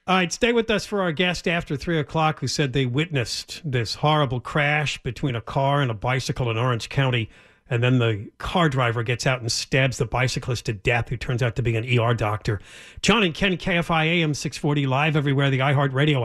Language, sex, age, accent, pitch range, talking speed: English, male, 40-59, American, 120-160 Hz, 210 wpm